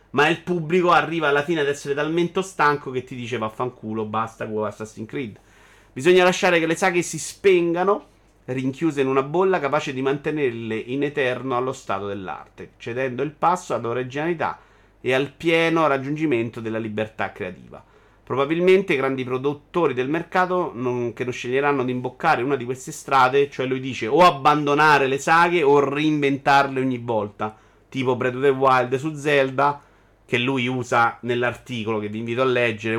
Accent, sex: native, male